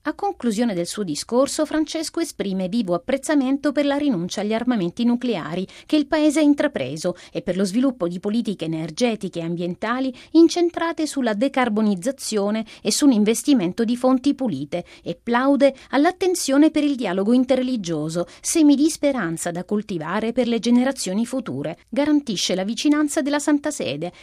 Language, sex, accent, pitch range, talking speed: Italian, female, native, 185-275 Hz, 145 wpm